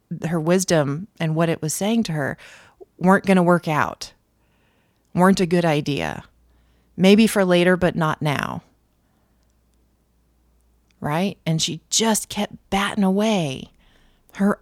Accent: American